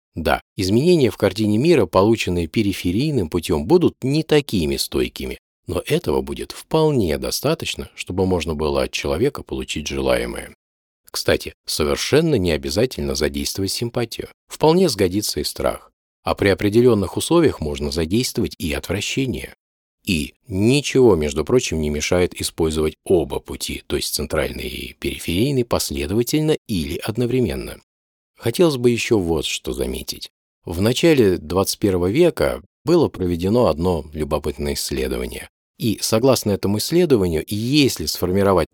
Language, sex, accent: Russian, male, native